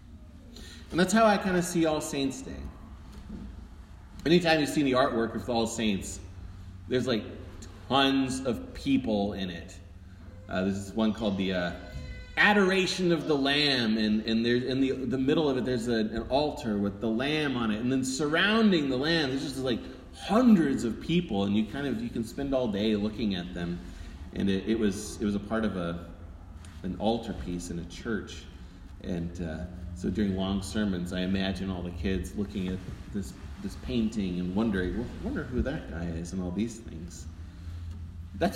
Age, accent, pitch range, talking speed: 30-49, American, 85-125 Hz, 195 wpm